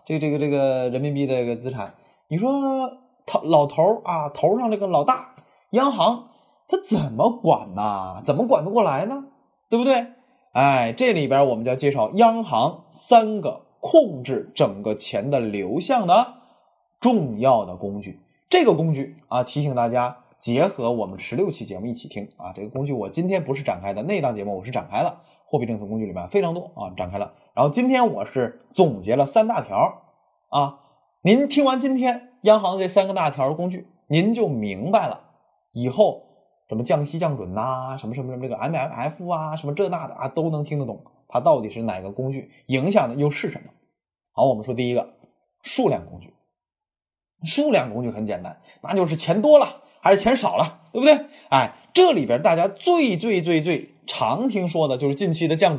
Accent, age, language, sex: native, 20-39, Chinese, male